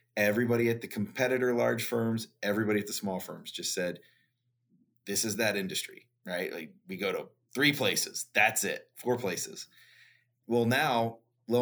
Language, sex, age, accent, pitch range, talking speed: English, male, 30-49, American, 105-125 Hz, 160 wpm